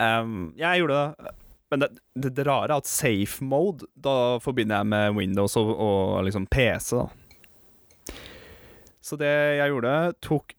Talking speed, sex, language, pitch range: 145 wpm, male, English, 105-125 Hz